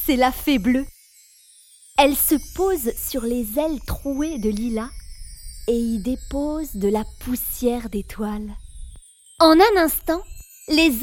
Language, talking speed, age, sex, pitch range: French, 130 wpm, 30-49, female, 200-290 Hz